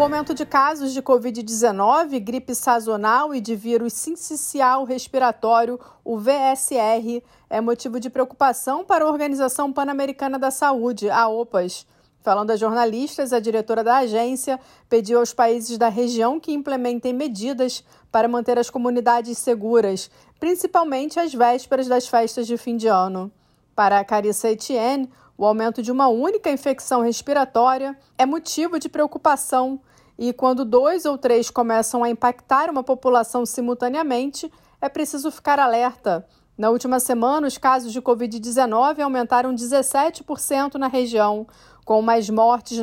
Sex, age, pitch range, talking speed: female, 40-59, 230-275 Hz, 140 wpm